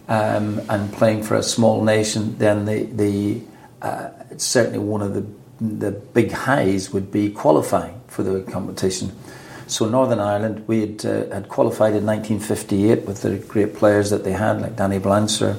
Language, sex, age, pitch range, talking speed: English, male, 50-69, 100-115 Hz, 170 wpm